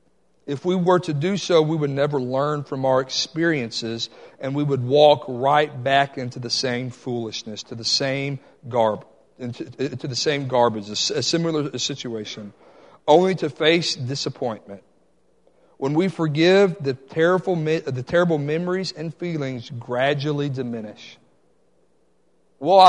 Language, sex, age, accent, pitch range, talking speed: English, male, 50-69, American, 130-175 Hz, 125 wpm